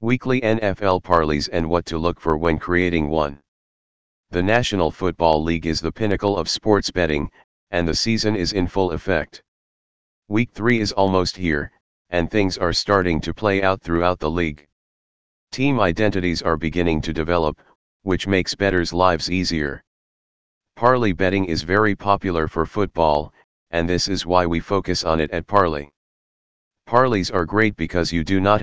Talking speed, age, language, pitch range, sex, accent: 165 wpm, 40-59, English, 80-100 Hz, male, American